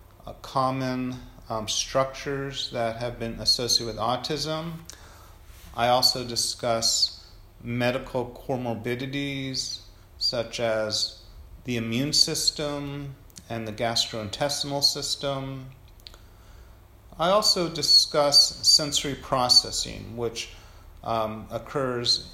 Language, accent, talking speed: Russian, American, 85 wpm